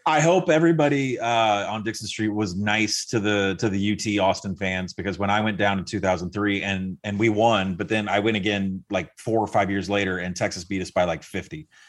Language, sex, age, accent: English, male, 30-49, American